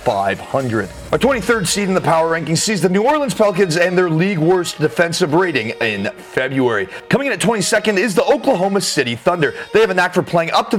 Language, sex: English, male